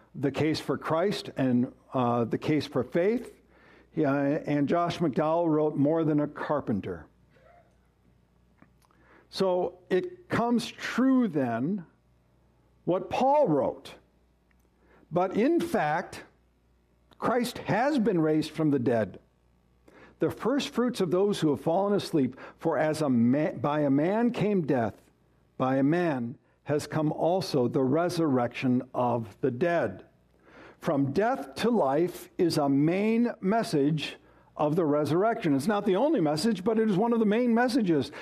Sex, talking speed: male, 145 wpm